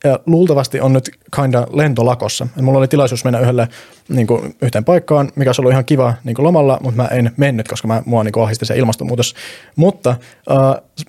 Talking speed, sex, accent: 195 wpm, male, native